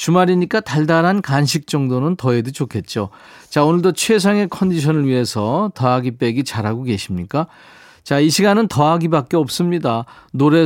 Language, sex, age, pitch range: Korean, male, 40-59, 120-165 Hz